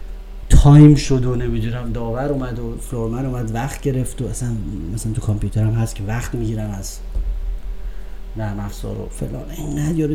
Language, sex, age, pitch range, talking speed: Persian, male, 30-49, 100-150 Hz, 150 wpm